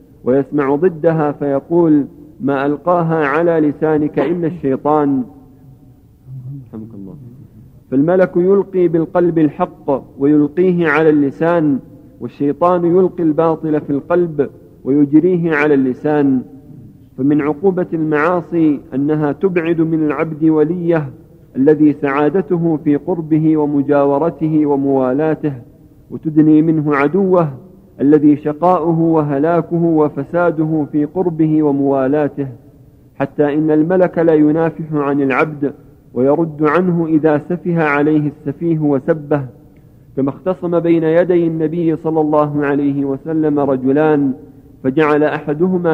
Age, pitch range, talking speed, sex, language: 50-69, 140-165 Hz, 95 wpm, male, Arabic